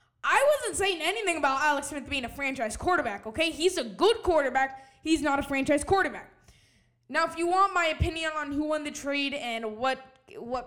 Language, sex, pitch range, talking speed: English, female, 205-285 Hz, 195 wpm